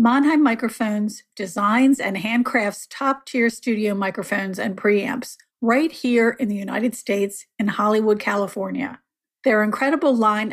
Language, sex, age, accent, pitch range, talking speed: English, female, 50-69, American, 205-250 Hz, 125 wpm